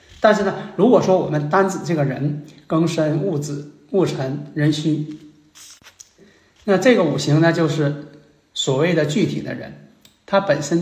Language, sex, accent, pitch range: Chinese, male, native, 145-170 Hz